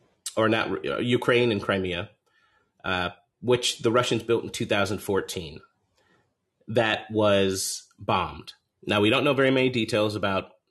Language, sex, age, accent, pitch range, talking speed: English, male, 30-49, American, 95-115 Hz, 135 wpm